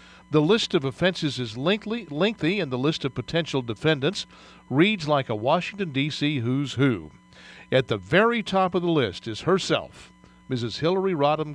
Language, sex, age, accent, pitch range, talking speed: English, male, 50-69, American, 130-165 Hz, 165 wpm